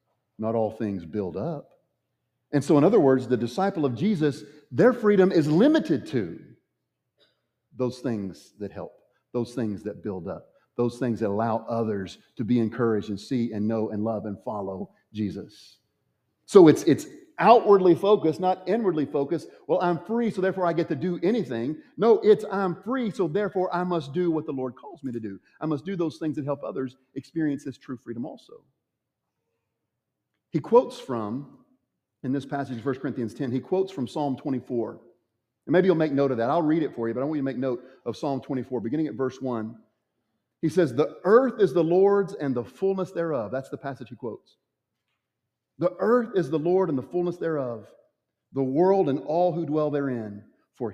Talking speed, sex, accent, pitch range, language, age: 195 wpm, male, American, 120-175 Hz, English, 50-69